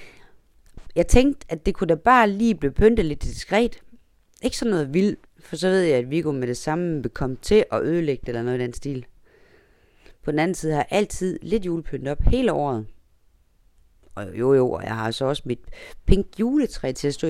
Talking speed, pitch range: 210 wpm, 120-185 Hz